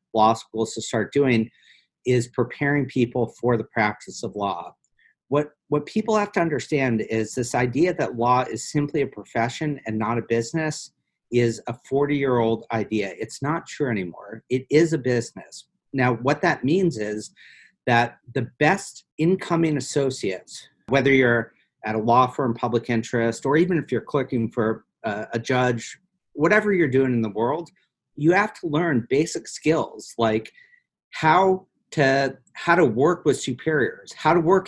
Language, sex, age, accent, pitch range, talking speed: English, male, 50-69, American, 120-160 Hz, 165 wpm